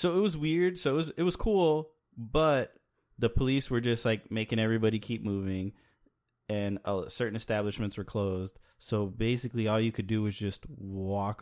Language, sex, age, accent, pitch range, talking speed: English, male, 20-39, American, 100-115 Hz, 185 wpm